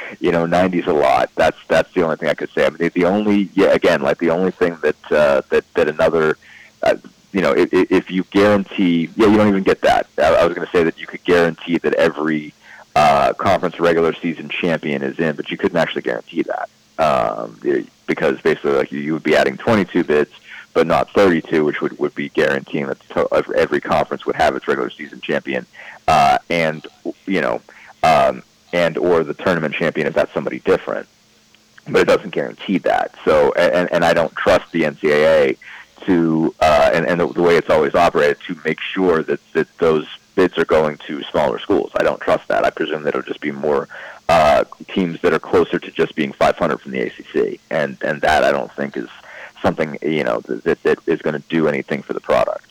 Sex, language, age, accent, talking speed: male, English, 30-49, American, 210 wpm